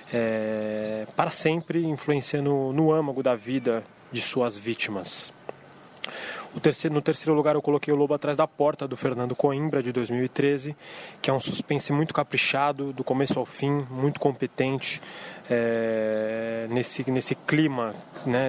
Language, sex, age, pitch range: Portuguese, male, 20-39, 120-140 Hz